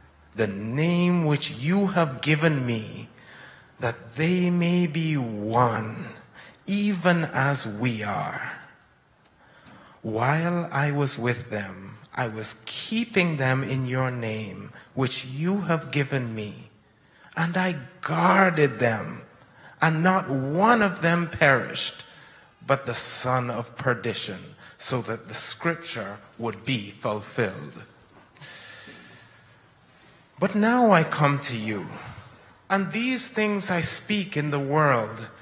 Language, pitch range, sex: English, 115-170 Hz, male